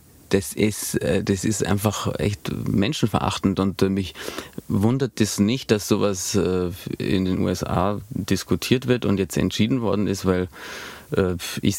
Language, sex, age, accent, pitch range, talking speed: German, male, 30-49, German, 100-120 Hz, 135 wpm